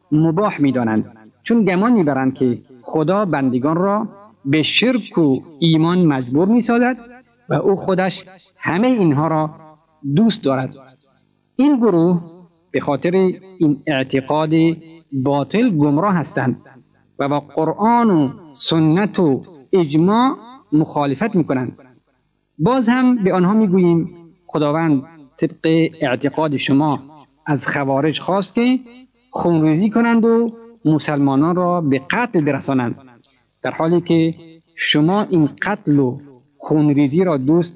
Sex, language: male, Persian